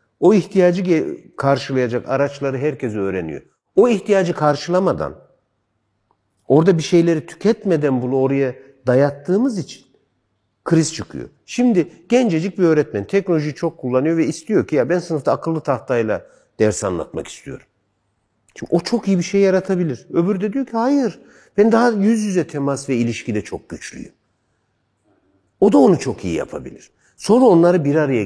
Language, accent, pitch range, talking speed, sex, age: Turkish, native, 125-175 Hz, 145 wpm, male, 60-79